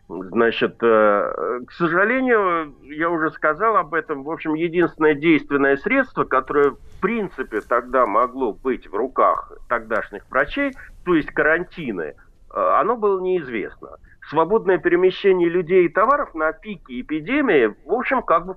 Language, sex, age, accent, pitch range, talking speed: Russian, male, 50-69, native, 140-215 Hz, 135 wpm